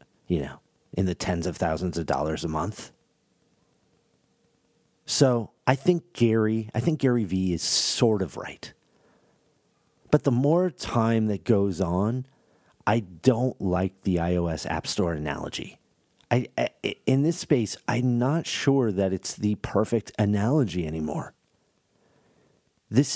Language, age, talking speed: English, 40-59, 135 wpm